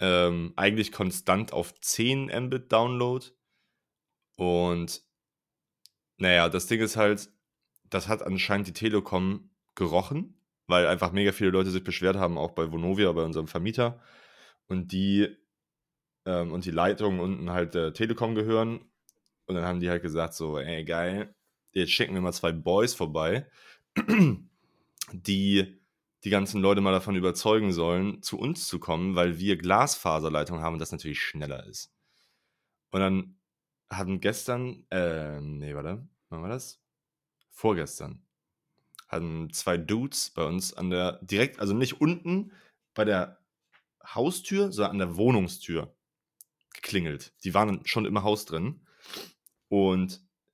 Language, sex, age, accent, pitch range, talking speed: German, male, 30-49, German, 90-110 Hz, 140 wpm